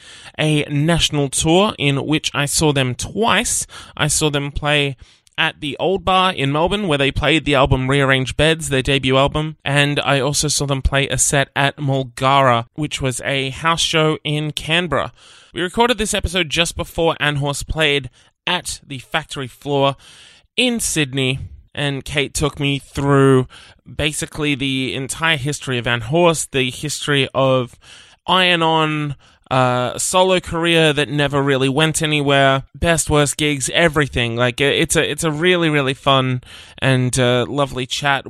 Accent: Australian